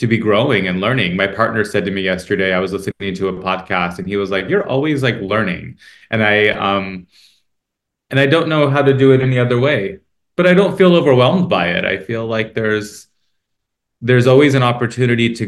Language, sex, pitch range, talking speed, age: English, male, 100-135 Hz, 215 wpm, 30-49